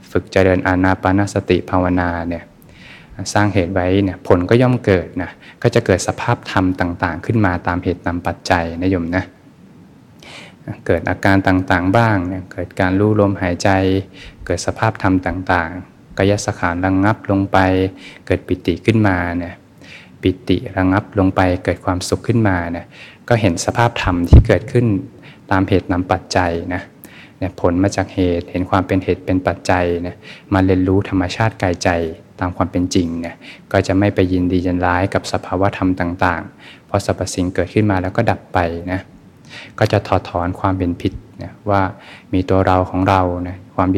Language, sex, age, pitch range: Thai, male, 20-39, 90-100 Hz